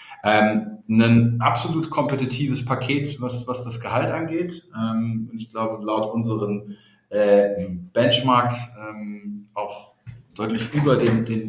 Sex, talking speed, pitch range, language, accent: male, 125 wpm, 110-130 Hz, German, German